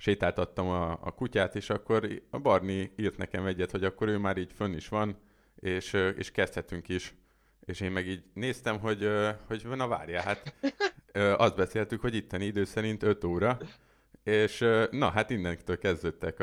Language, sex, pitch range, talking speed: Hungarian, male, 90-105 Hz, 170 wpm